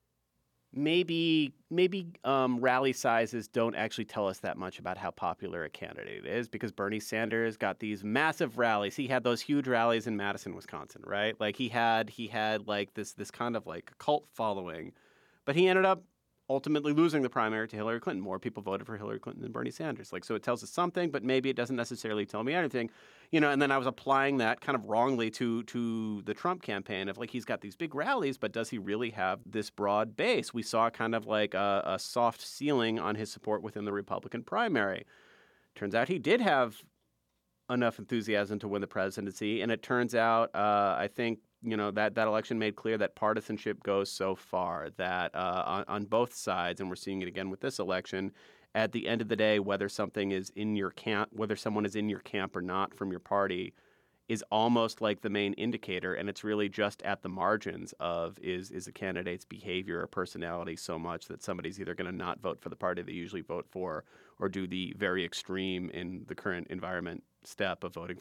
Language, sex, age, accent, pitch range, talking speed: English, male, 30-49, American, 100-120 Hz, 215 wpm